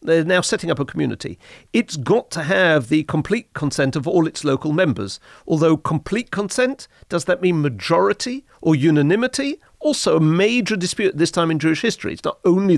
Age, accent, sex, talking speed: 50-69, British, male, 185 wpm